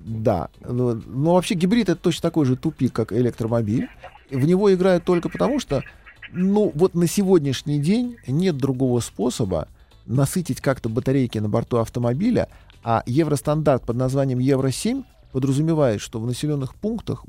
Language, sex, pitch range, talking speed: Russian, male, 115-150 Hz, 145 wpm